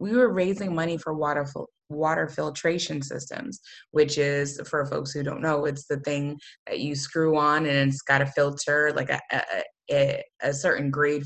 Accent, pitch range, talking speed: American, 145-165 Hz, 180 wpm